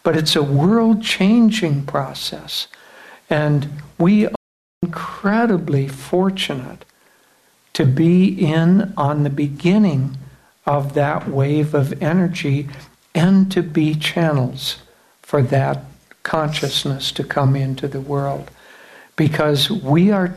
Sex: male